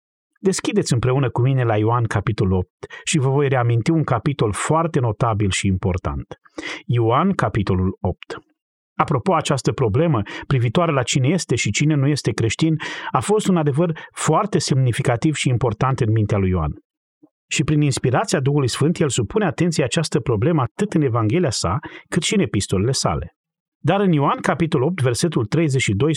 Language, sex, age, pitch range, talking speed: Romanian, male, 30-49, 110-160 Hz, 165 wpm